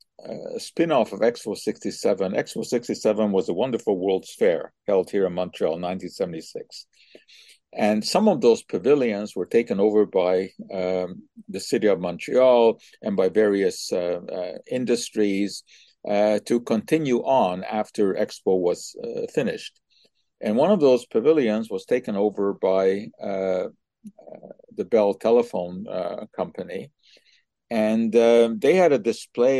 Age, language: 50-69, English